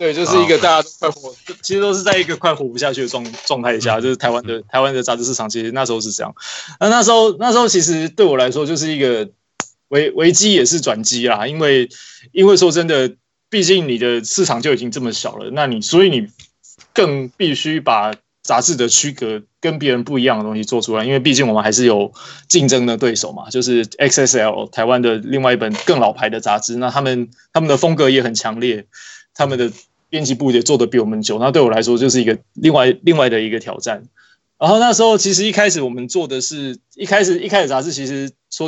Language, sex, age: Chinese, male, 20-39